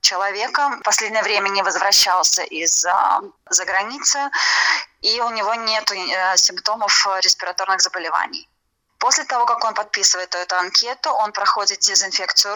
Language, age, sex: Russian, 20-39, female